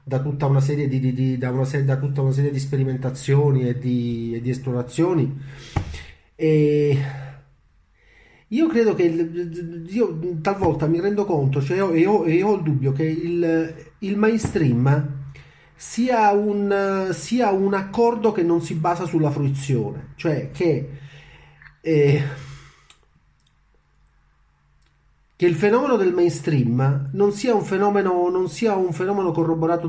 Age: 30-49